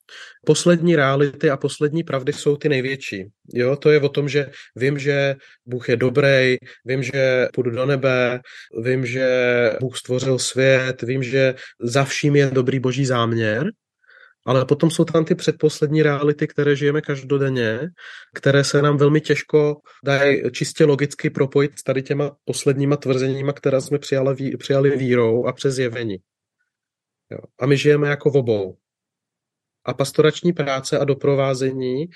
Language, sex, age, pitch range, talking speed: Czech, male, 30-49, 125-145 Hz, 145 wpm